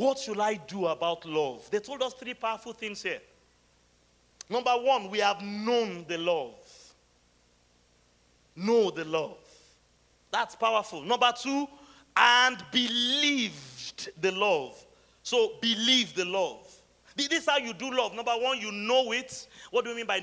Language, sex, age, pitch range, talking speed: English, male, 40-59, 165-255 Hz, 150 wpm